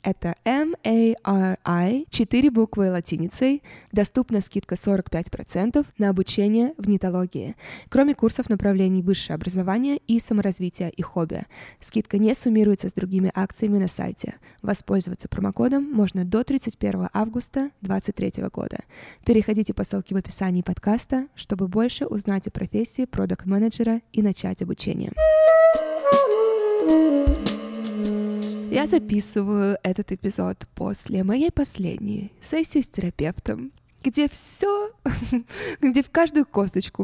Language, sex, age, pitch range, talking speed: Russian, female, 20-39, 195-255 Hz, 110 wpm